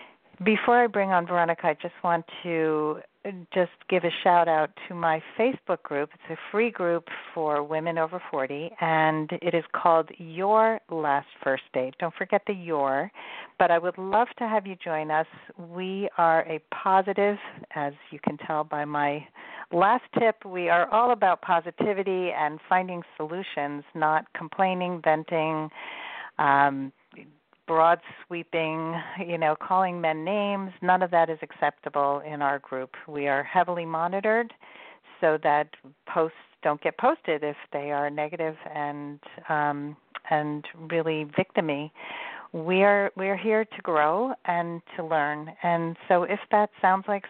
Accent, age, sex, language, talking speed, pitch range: American, 50-69, female, English, 150 wpm, 155-190 Hz